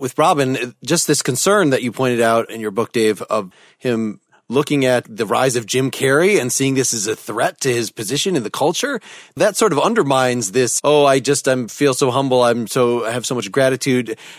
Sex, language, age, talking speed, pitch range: male, English, 30-49, 225 wpm, 125-160 Hz